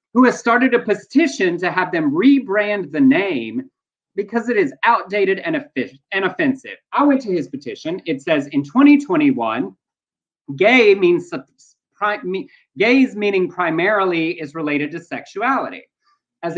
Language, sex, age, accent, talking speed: English, male, 30-49, American, 150 wpm